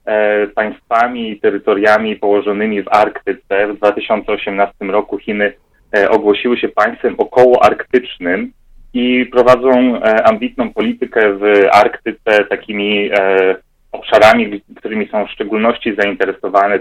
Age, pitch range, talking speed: 30-49, 95-120 Hz, 95 wpm